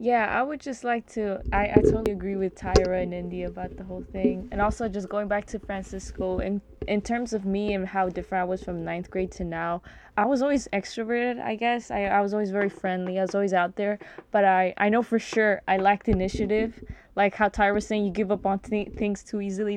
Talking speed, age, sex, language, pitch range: 240 wpm, 20-39, female, English, 185-210 Hz